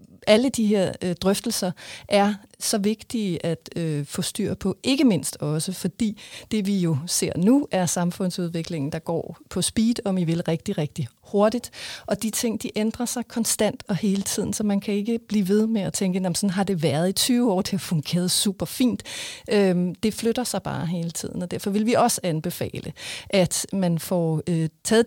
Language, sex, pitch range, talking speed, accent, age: Danish, female, 175-215 Hz, 190 wpm, native, 40-59